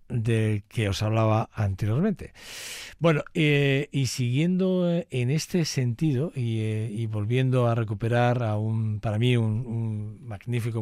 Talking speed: 140 wpm